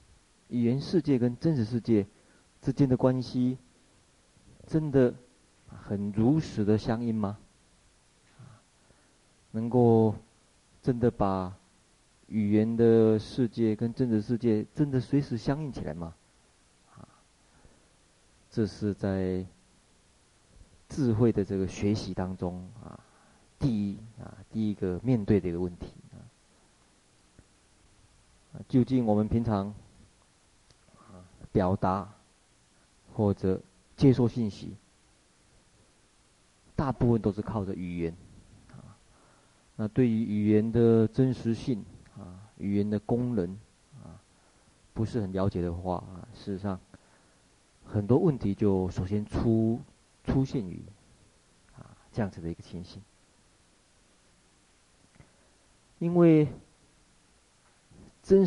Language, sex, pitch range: Chinese, male, 95-120 Hz